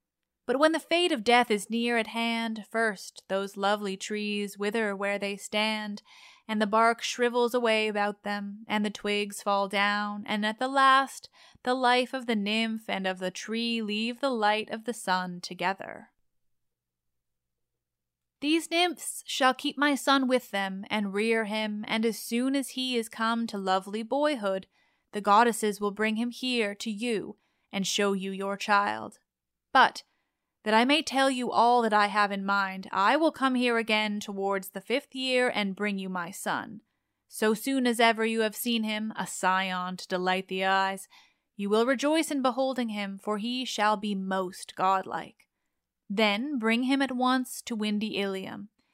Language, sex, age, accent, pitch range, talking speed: English, female, 20-39, American, 200-245 Hz, 175 wpm